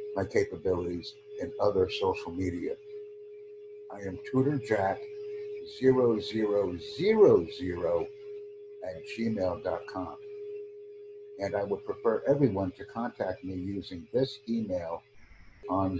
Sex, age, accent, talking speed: male, 60-79, American, 105 wpm